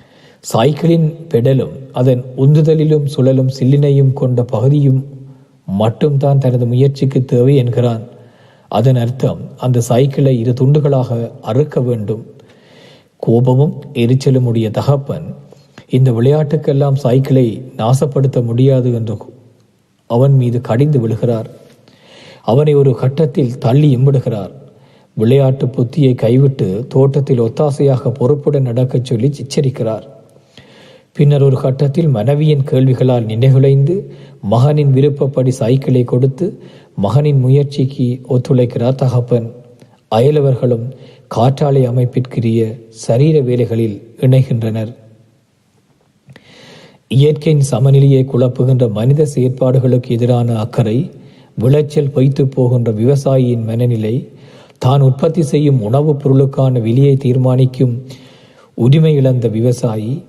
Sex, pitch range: male, 120-140 Hz